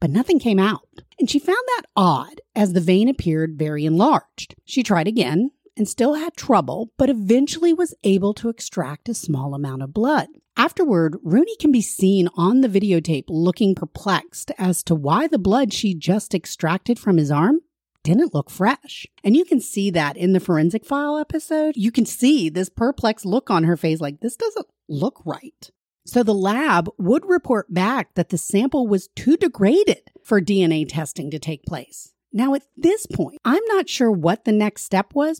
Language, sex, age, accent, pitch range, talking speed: English, female, 40-59, American, 175-260 Hz, 190 wpm